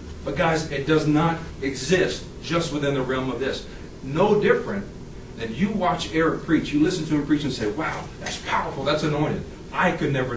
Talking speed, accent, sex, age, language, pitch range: 195 wpm, American, male, 40-59, English, 135-190 Hz